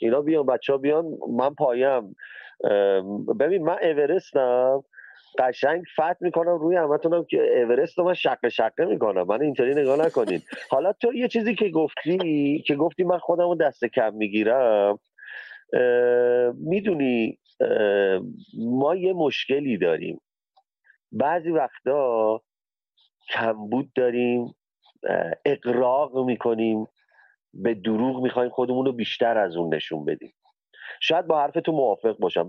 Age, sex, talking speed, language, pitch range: 40-59, male, 125 wpm, Persian, 120-175 Hz